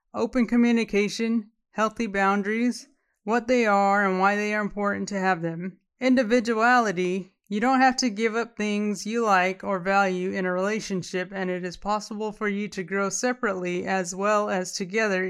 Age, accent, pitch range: 30-49, American, 195-240 Hz